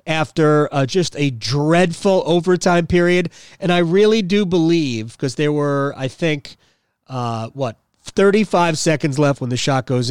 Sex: male